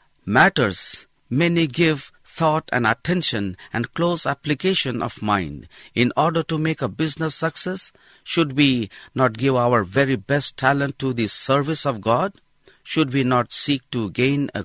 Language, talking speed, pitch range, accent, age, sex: English, 155 wpm, 120-160 Hz, Indian, 50-69, male